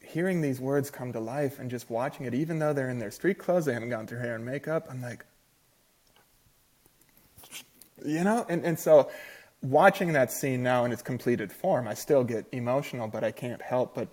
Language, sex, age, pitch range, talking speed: English, male, 30-49, 115-145 Hz, 205 wpm